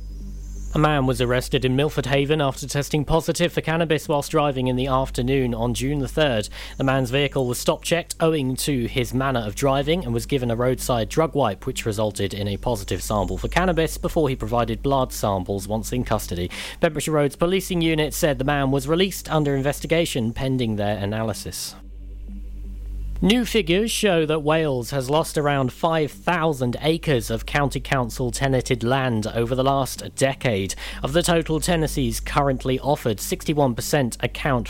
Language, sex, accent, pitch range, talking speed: English, male, British, 115-155 Hz, 165 wpm